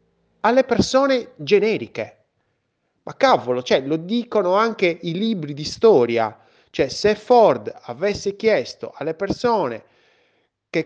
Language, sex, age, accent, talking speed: Italian, male, 30-49, native, 110 wpm